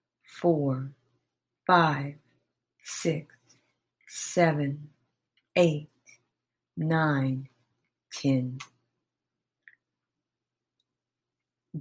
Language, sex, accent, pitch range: English, female, American, 135-185 Hz